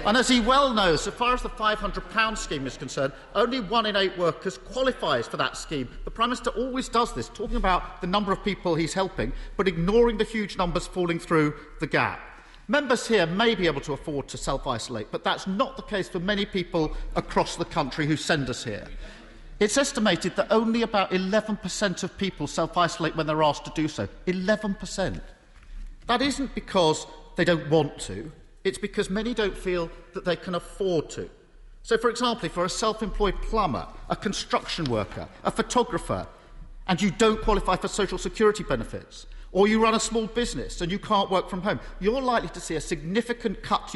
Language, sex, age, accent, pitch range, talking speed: English, male, 50-69, British, 160-220 Hz, 195 wpm